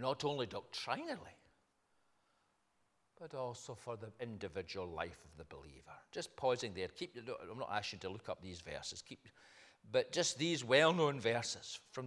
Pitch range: 130-175 Hz